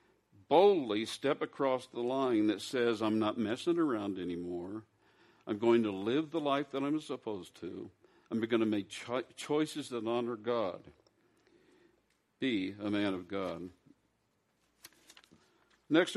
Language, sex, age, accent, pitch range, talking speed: English, male, 60-79, American, 110-150 Hz, 135 wpm